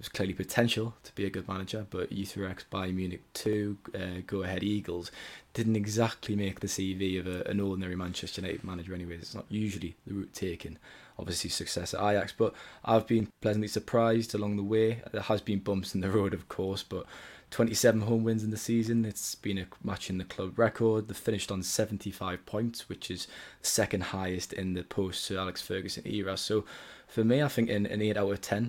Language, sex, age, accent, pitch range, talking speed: English, male, 20-39, British, 95-110 Hz, 205 wpm